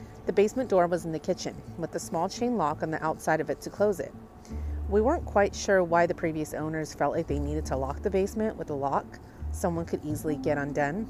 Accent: American